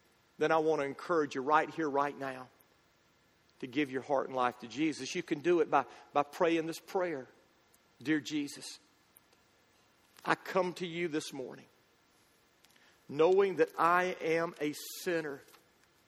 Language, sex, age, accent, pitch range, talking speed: English, male, 50-69, American, 140-180 Hz, 155 wpm